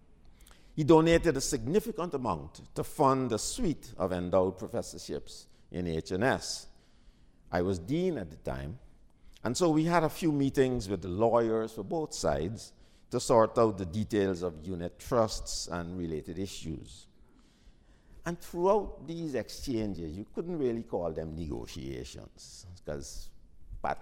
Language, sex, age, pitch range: English, male, 60-79, 90-150 Hz